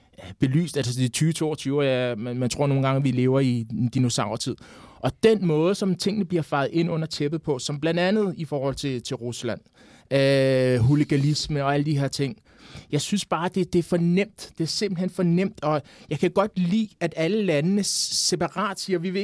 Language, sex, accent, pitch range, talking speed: Danish, male, native, 155-210 Hz, 205 wpm